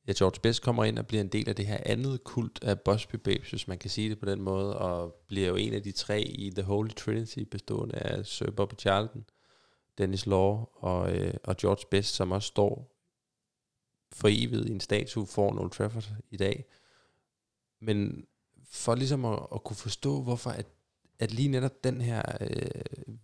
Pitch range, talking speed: 100-120 Hz, 200 wpm